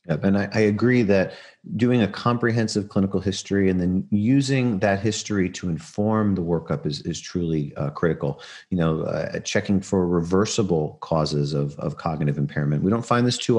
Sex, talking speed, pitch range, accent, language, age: male, 180 wpm, 80-100 Hz, American, English, 40-59